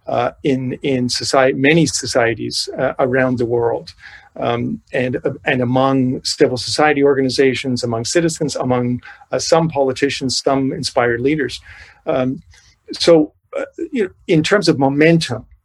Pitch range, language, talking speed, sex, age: 130-160 Hz, English, 125 wpm, male, 50-69